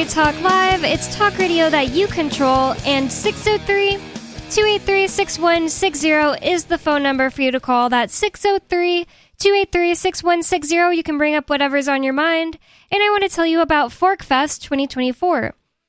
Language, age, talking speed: English, 10-29, 145 wpm